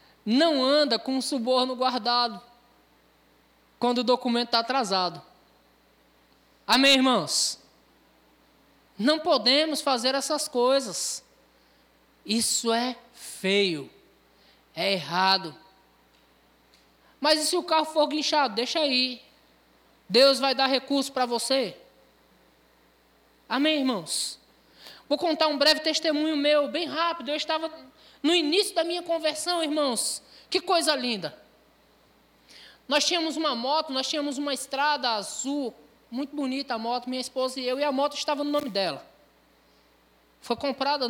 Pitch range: 235-300 Hz